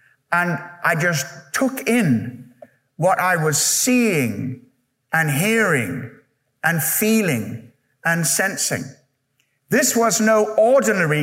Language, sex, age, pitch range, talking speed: English, male, 60-79, 165-230 Hz, 100 wpm